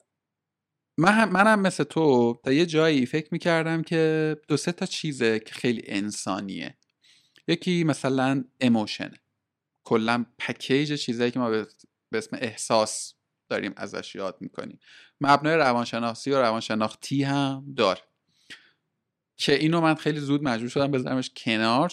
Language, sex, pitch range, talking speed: Persian, male, 115-150 Hz, 130 wpm